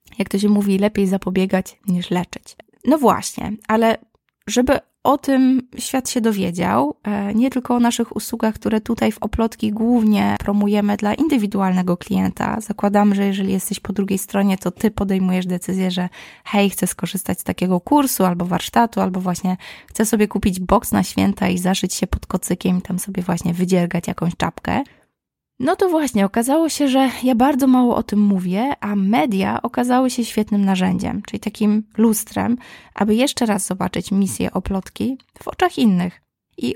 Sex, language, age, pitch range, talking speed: female, Polish, 20-39, 190-230 Hz, 170 wpm